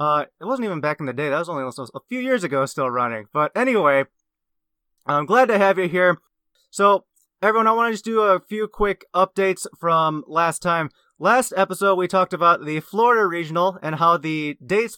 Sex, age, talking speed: male, 20-39, 205 wpm